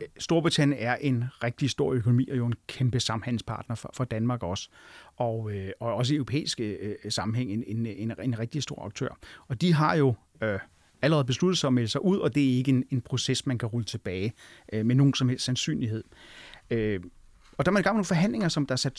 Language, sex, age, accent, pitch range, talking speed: Danish, male, 30-49, native, 125-150 Hz, 225 wpm